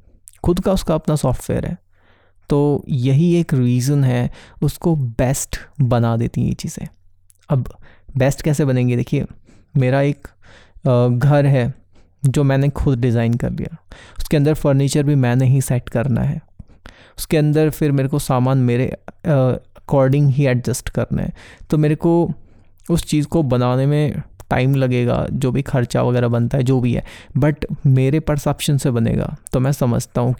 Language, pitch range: Hindi, 125-150 Hz